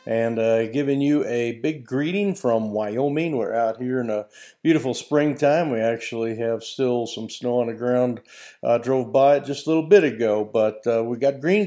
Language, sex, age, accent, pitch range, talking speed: English, male, 50-69, American, 115-135 Hz, 200 wpm